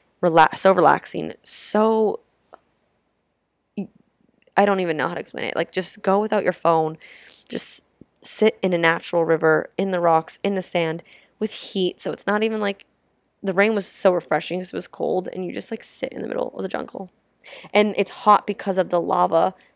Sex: female